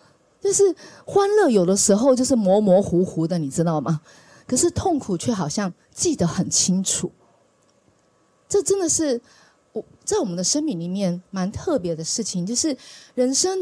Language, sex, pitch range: Chinese, female, 195-305 Hz